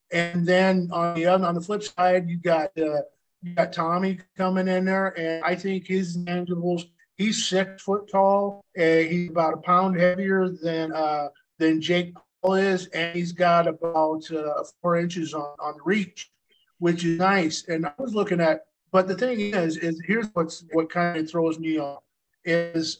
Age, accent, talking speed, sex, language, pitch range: 50-69, American, 185 wpm, male, English, 165-190 Hz